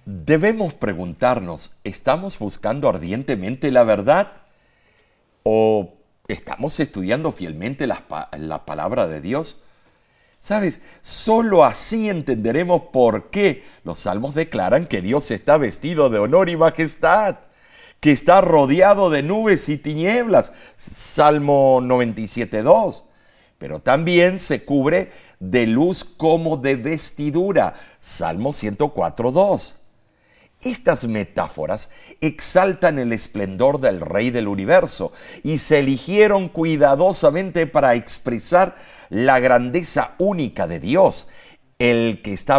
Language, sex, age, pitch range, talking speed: Spanish, male, 50-69, 115-175 Hz, 105 wpm